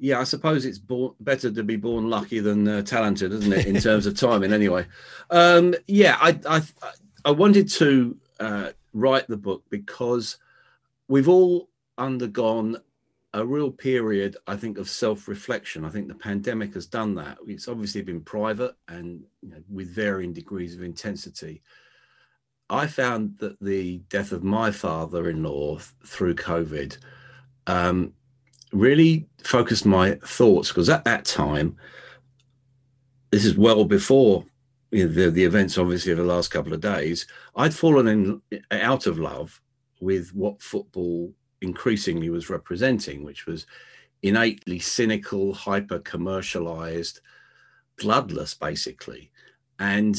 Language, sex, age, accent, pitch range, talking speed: English, male, 40-59, British, 95-130 Hz, 140 wpm